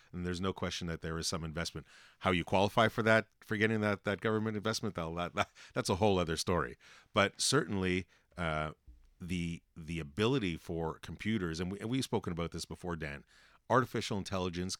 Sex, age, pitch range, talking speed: male, 40-59, 85-110 Hz, 190 wpm